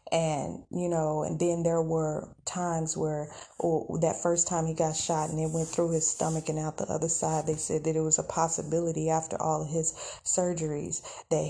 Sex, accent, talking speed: female, American, 205 wpm